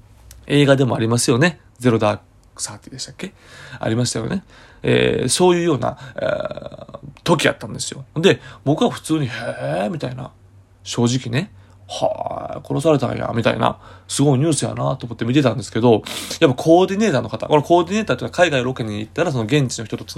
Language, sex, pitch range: Japanese, male, 110-155 Hz